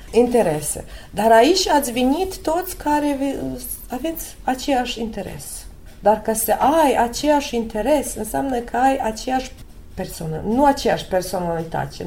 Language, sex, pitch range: Romanian, female, 185-240 Hz